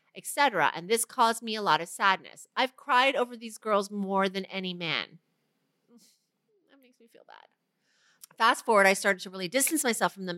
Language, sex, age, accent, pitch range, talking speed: English, female, 30-49, American, 170-230 Hz, 190 wpm